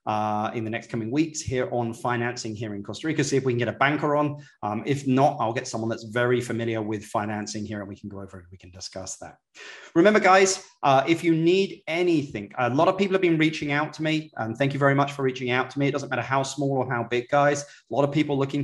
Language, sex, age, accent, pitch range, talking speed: English, male, 30-49, British, 115-145 Hz, 270 wpm